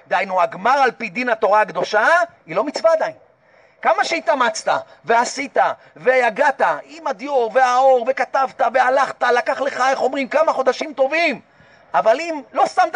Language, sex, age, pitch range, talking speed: Hebrew, male, 40-59, 245-310 Hz, 145 wpm